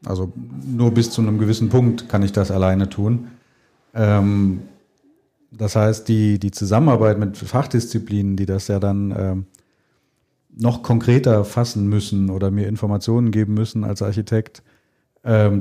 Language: German